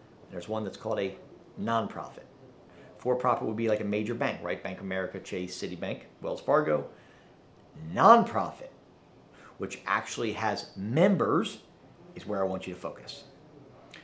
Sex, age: male, 50-69